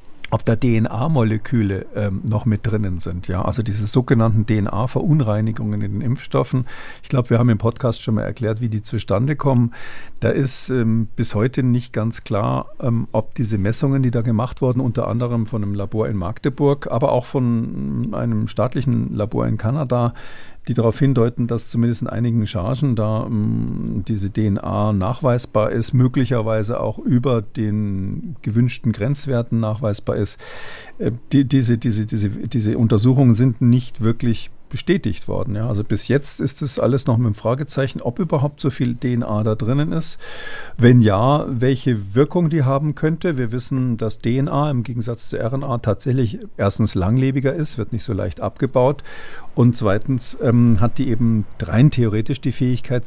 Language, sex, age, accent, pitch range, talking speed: German, male, 50-69, German, 110-130 Hz, 165 wpm